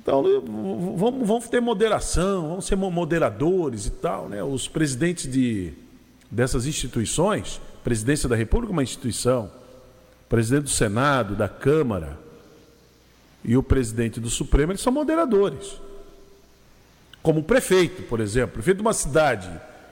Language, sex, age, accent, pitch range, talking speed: Portuguese, male, 50-69, Brazilian, 135-215 Hz, 135 wpm